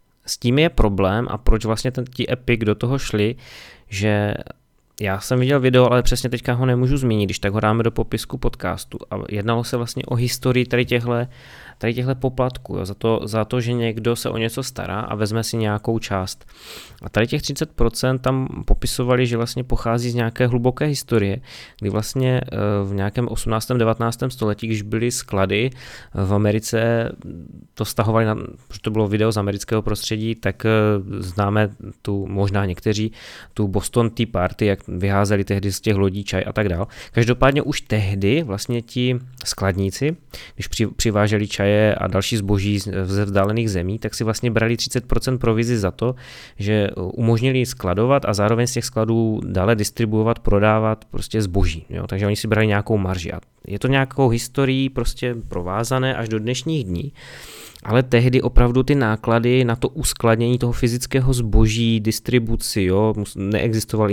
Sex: male